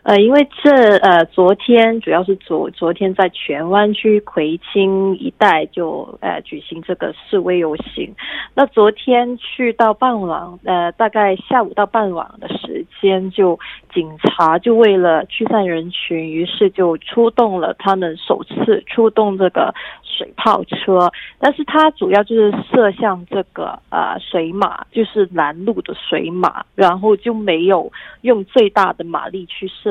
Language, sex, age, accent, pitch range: Korean, female, 20-39, Chinese, 180-230 Hz